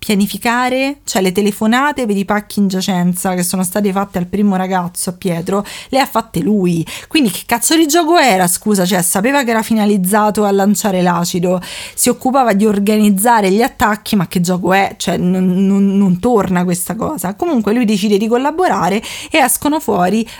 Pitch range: 185-225 Hz